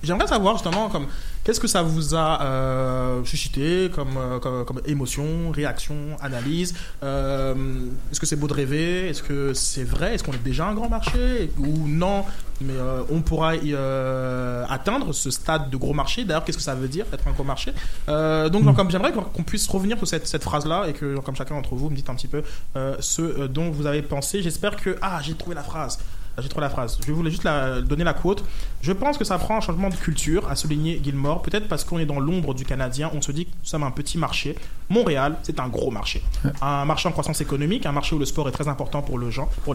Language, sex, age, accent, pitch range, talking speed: French, male, 20-39, French, 140-175 Hz, 235 wpm